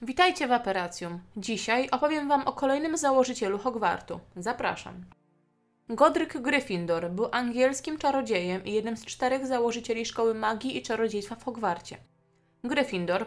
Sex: female